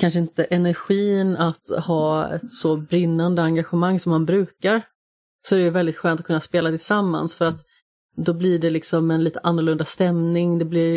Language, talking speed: Swedish, 180 wpm